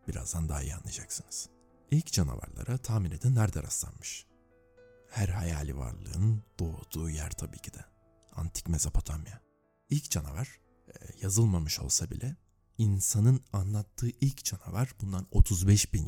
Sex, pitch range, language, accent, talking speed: male, 85-110 Hz, Turkish, native, 120 wpm